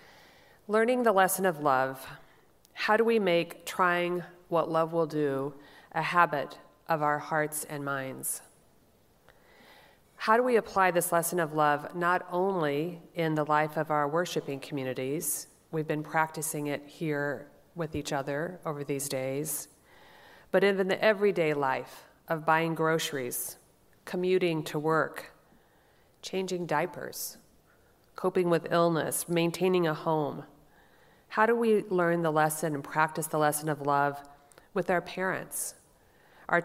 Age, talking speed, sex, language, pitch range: 40-59, 140 wpm, female, English, 150-175 Hz